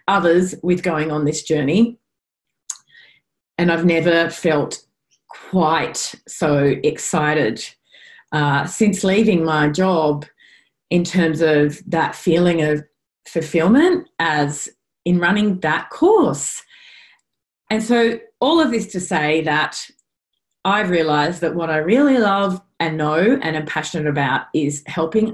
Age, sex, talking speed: 30-49, female, 125 wpm